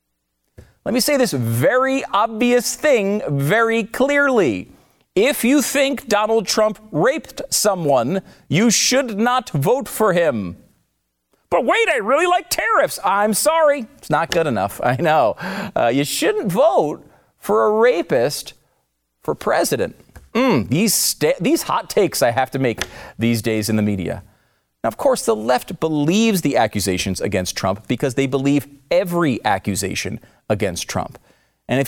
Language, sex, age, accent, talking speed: English, male, 40-59, American, 145 wpm